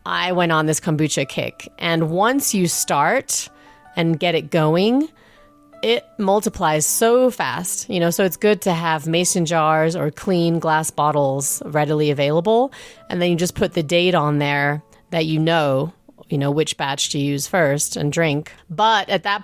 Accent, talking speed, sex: American, 175 wpm, female